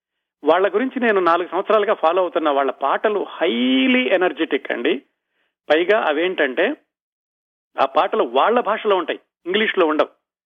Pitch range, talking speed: 150-200 Hz, 120 wpm